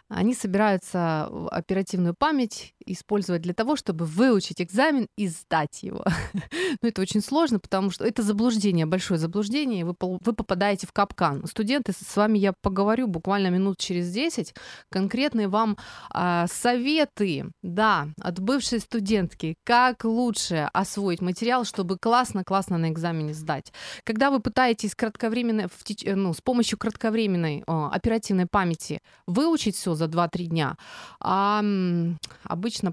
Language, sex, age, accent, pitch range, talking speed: Ukrainian, female, 30-49, native, 175-225 Hz, 135 wpm